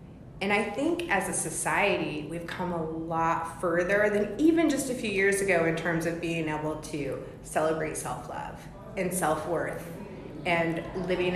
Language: English